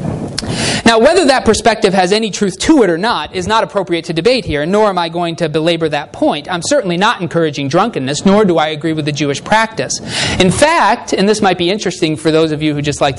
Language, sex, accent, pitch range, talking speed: English, male, American, 155-210 Hz, 235 wpm